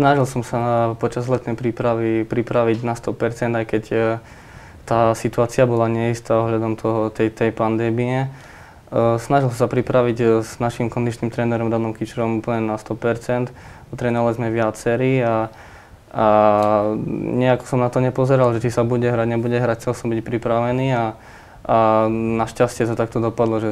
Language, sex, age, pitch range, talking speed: Slovak, male, 20-39, 110-120 Hz, 165 wpm